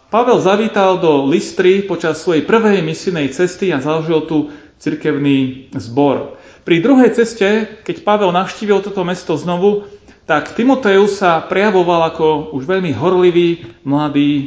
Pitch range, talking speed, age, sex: 140-190 Hz, 135 wpm, 40-59, male